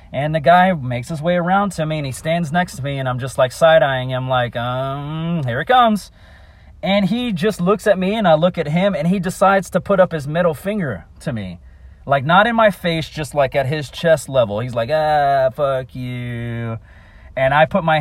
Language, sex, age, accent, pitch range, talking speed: English, male, 30-49, American, 110-175 Hz, 225 wpm